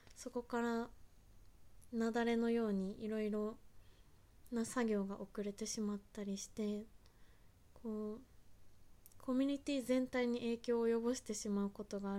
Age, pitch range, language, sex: 20-39, 200-235 Hz, Japanese, female